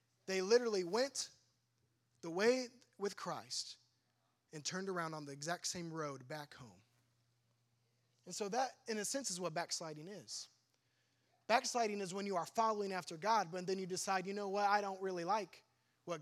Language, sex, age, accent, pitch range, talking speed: English, male, 20-39, American, 130-200 Hz, 175 wpm